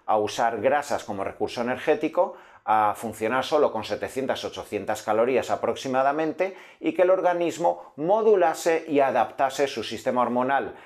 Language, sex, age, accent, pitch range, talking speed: Spanish, male, 40-59, Spanish, 115-160 Hz, 125 wpm